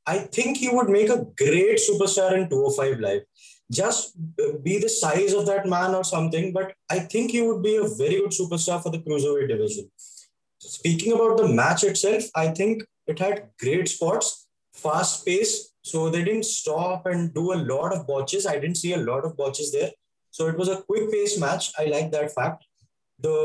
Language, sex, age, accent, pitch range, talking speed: English, male, 20-39, Indian, 155-220 Hz, 195 wpm